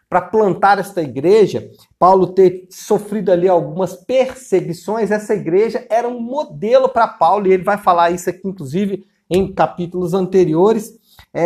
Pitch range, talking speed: 175-235 Hz, 140 wpm